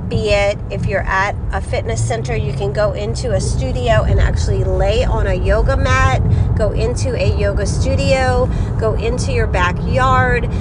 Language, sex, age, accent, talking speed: English, female, 30-49, American, 170 wpm